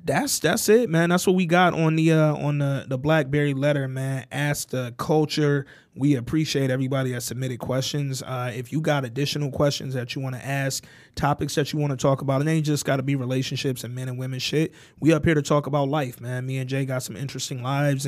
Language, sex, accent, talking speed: English, male, American, 235 wpm